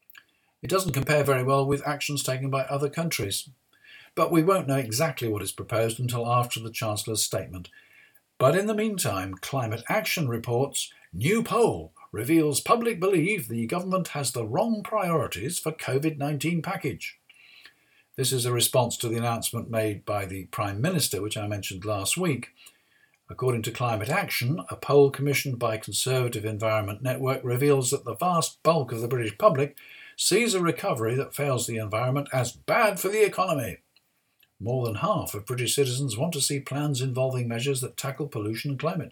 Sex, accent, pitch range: male, British, 115-160 Hz